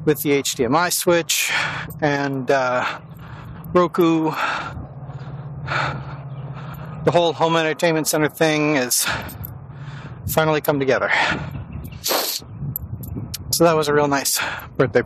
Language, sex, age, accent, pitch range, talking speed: English, male, 40-59, American, 110-150 Hz, 95 wpm